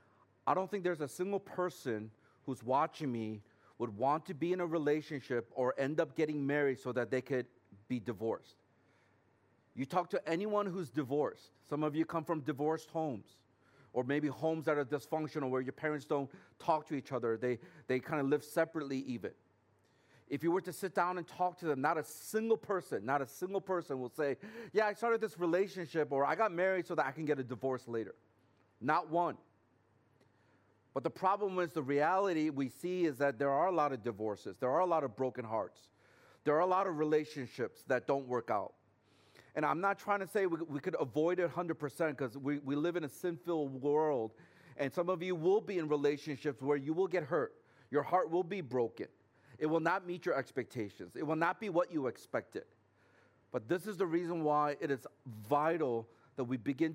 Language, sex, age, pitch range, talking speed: English, male, 40-59, 130-175 Hz, 210 wpm